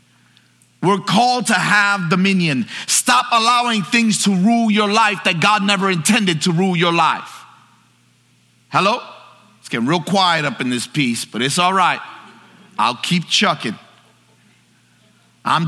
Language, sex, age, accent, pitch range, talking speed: English, male, 30-49, American, 145-200 Hz, 140 wpm